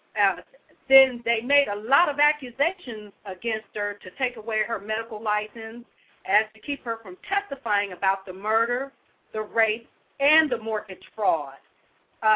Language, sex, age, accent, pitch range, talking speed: English, female, 50-69, American, 210-270 Hz, 155 wpm